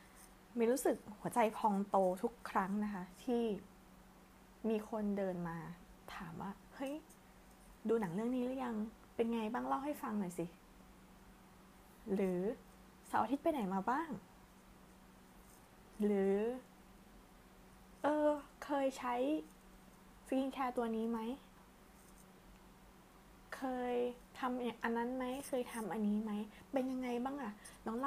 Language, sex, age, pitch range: Thai, female, 20-39, 190-245 Hz